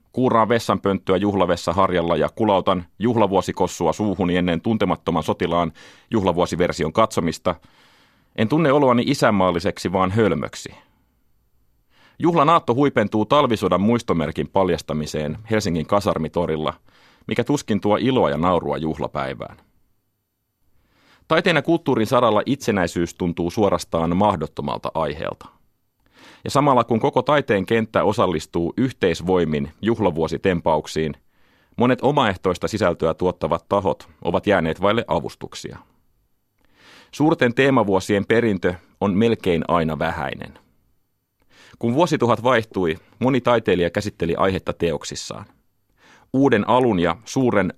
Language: Finnish